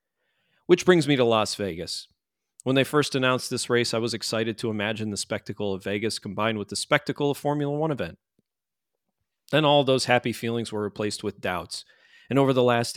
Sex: male